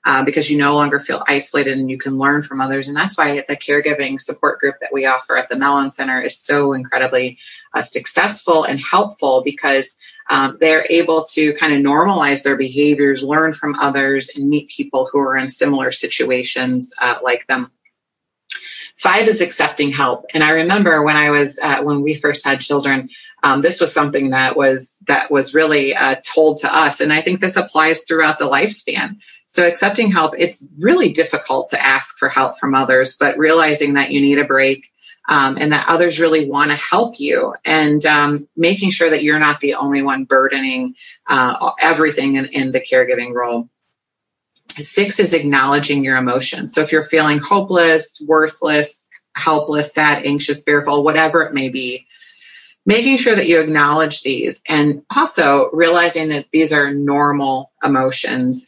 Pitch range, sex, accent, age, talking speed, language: 140-165 Hz, female, American, 30-49, 180 wpm, English